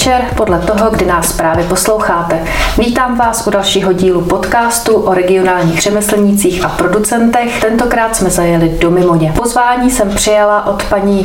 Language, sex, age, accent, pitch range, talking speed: Czech, female, 30-49, native, 175-205 Hz, 145 wpm